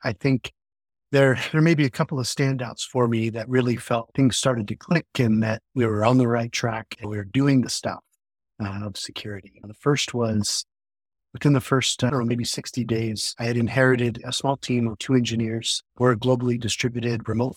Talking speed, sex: 210 wpm, male